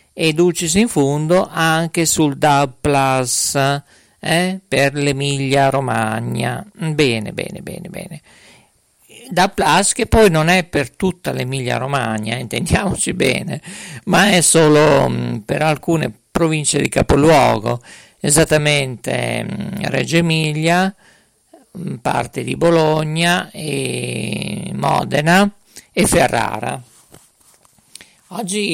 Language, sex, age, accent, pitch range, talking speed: Italian, male, 50-69, native, 145-195 Hz, 100 wpm